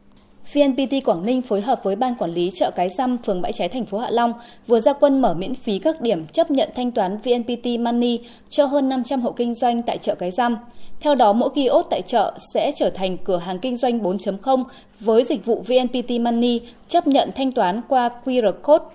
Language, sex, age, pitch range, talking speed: Vietnamese, female, 20-39, 210-260 Hz, 220 wpm